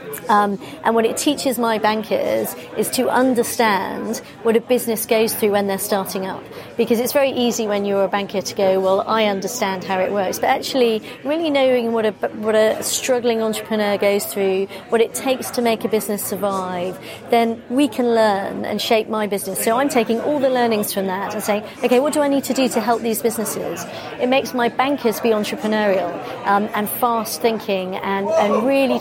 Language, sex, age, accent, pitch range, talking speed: English, female, 40-59, British, 200-245 Hz, 200 wpm